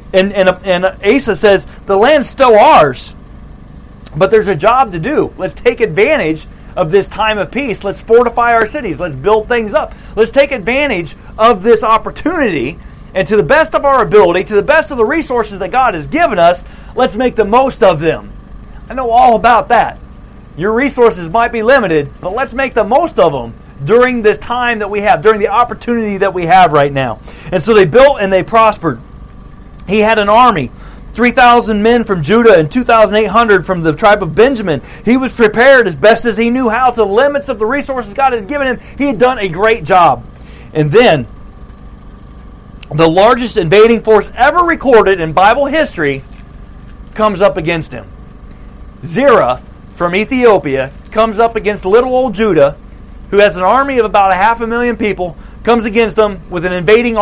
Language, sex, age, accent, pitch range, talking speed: English, male, 40-59, American, 185-240 Hz, 190 wpm